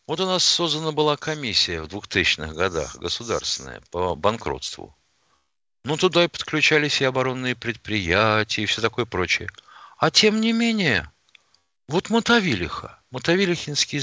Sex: male